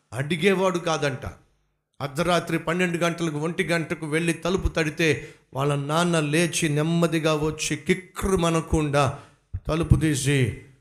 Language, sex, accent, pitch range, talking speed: Telugu, male, native, 140-185 Hz, 100 wpm